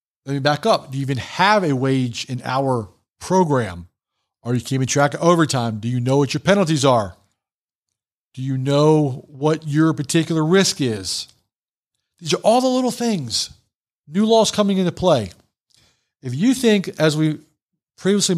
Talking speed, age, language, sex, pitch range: 165 wpm, 50-69, English, male, 125-165 Hz